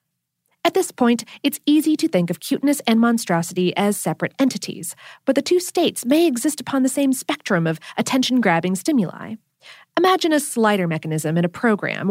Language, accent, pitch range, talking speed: English, American, 180-275 Hz, 170 wpm